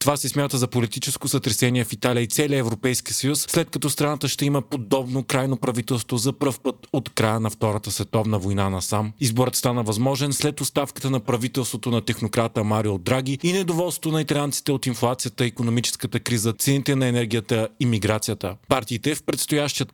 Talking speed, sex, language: 175 wpm, male, Bulgarian